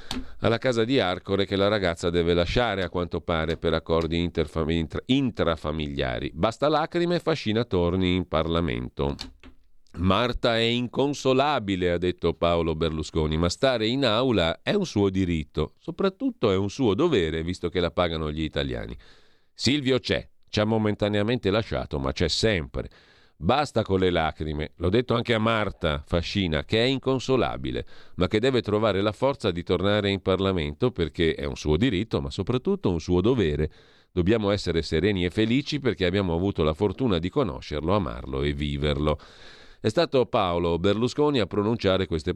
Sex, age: male, 40-59